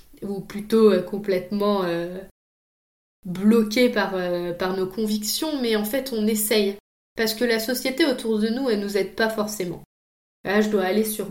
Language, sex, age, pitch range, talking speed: French, female, 20-39, 185-225 Hz, 180 wpm